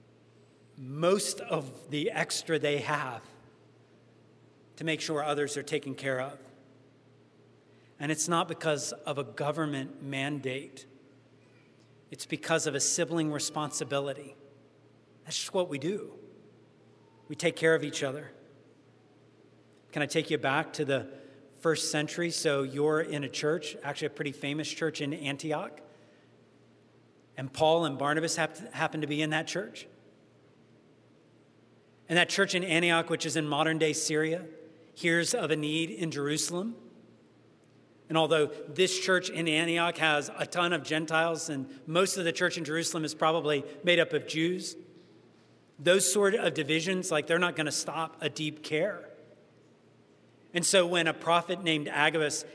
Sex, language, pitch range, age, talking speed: male, English, 145-170 Hz, 40-59, 150 wpm